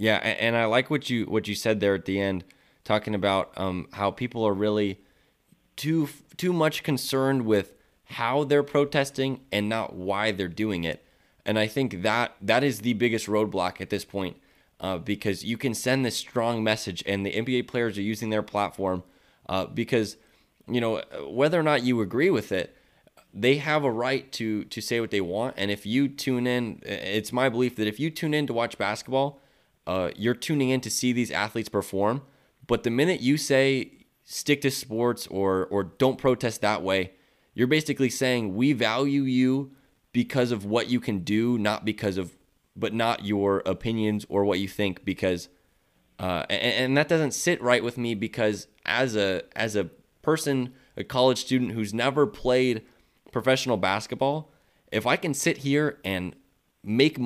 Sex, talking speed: male, 185 wpm